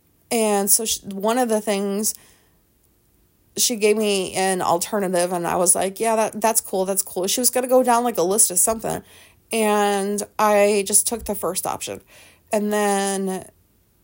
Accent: American